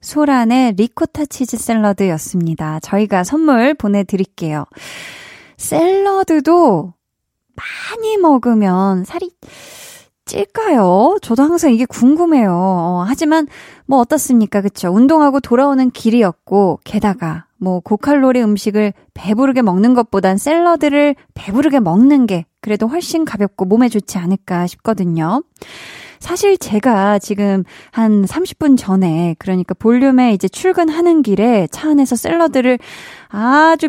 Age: 20-39